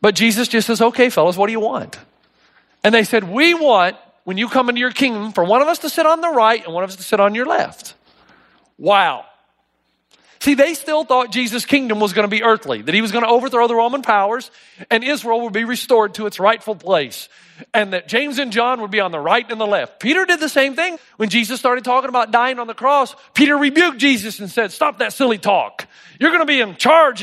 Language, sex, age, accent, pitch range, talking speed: English, male, 40-59, American, 210-275 Hz, 240 wpm